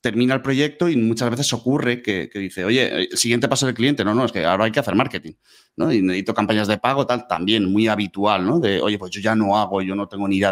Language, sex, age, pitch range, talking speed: Spanish, male, 30-49, 100-125 Hz, 275 wpm